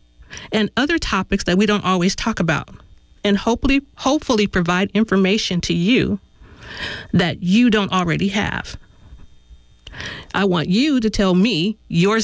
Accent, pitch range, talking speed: American, 160-225 Hz, 135 wpm